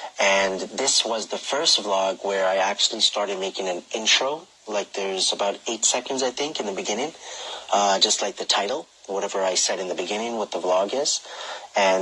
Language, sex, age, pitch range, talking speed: English, male, 30-49, 95-115 Hz, 195 wpm